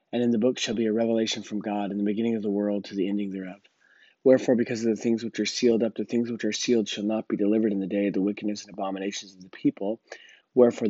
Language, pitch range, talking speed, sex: English, 105-120 Hz, 275 wpm, male